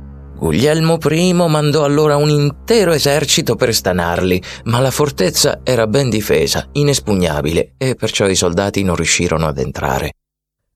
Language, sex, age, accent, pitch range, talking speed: Italian, male, 30-49, native, 85-145 Hz, 135 wpm